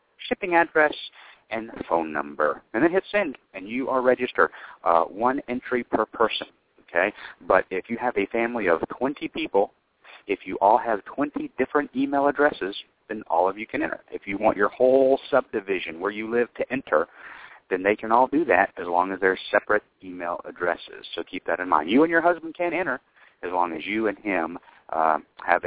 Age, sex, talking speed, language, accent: 40-59, male, 200 wpm, English, American